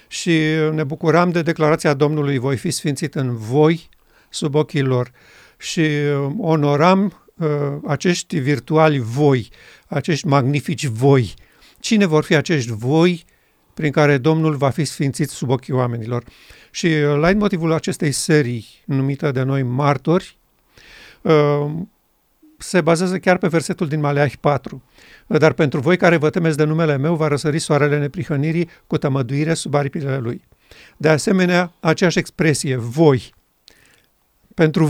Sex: male